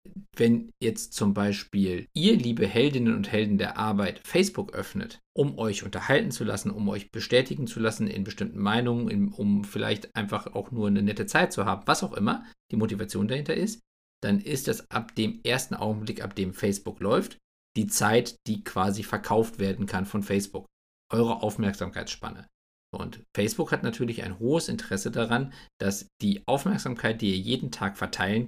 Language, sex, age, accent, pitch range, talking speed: German, male, 50-69, German, 100-125 Hz, 170 wpm